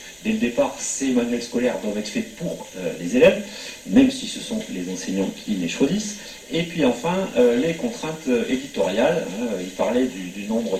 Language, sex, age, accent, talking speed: French, male, 40-59, French, 195 wpm